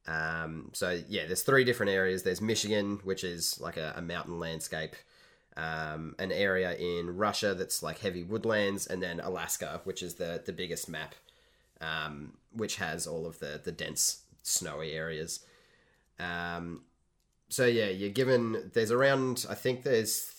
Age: 30-49